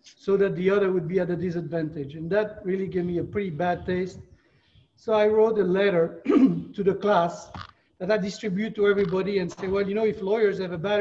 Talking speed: 225 wpm